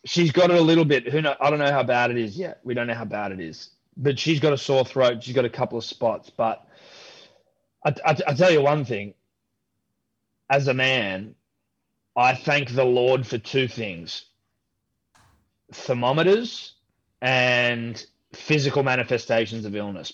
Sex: male